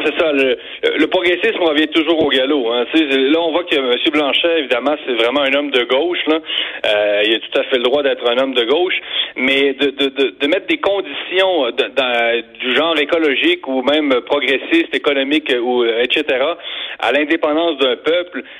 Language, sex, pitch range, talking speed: French, male, 130-195 Hz, 175 wpm